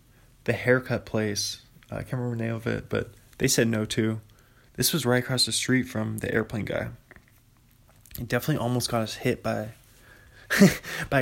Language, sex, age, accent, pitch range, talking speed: English, male, 20-39, American, 115-130 Hz, 180 wpm